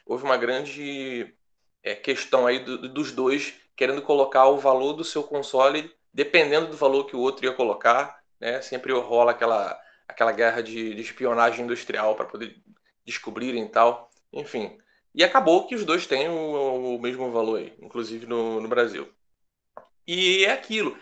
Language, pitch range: Portuguese, 120-155 Hz